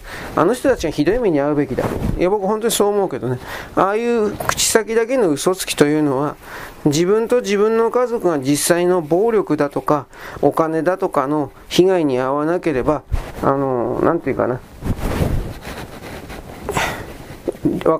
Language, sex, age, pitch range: Japanese, male, 40-59, 145-205 Hz